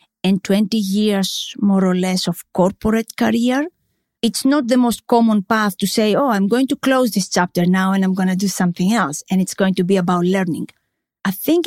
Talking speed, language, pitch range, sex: 210 wpm, English, 185-230 Hz, female